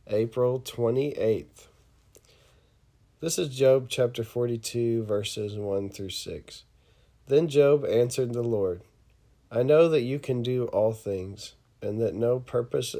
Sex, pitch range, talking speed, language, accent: male, 110-125 Hz, 130 wpm, English, American